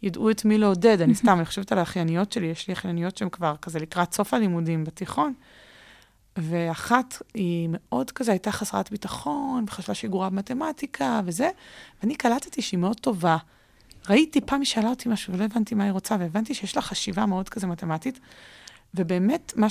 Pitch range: 175-225 Hz